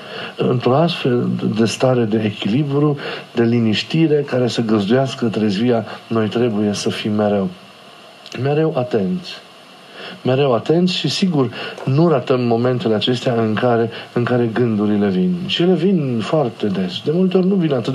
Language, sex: Romanian, male